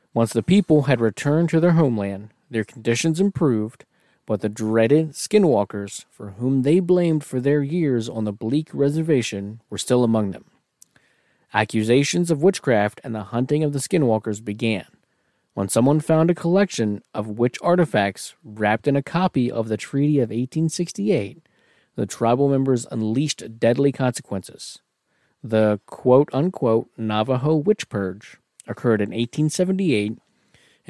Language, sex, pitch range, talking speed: English, male, 110-150 Hz, 140 wpm